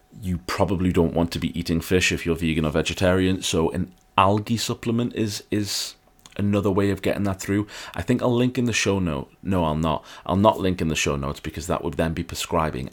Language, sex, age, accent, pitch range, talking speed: English, male, 30-49, British, 85-100 Hz, 230 wpm